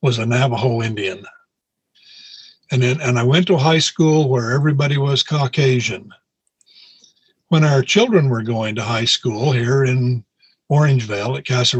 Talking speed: 145 wpm